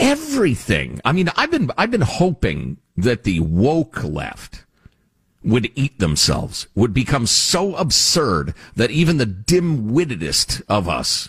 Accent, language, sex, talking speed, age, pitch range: American, English, male, 135 wpm, 50-69, 90-140 Hz